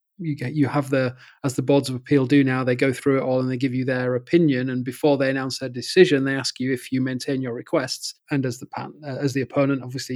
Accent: British